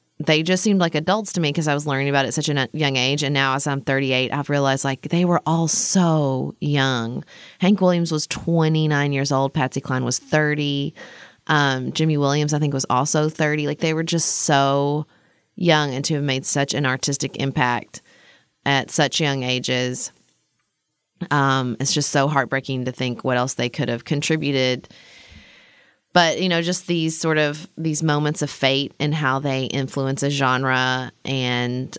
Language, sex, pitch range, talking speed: English, female, 135-160 Hz, 185 wpm